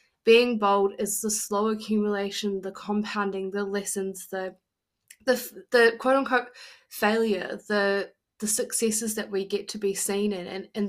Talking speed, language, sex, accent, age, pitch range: 155 wpm, English, female, Australian, 20-39, 195-230 Hz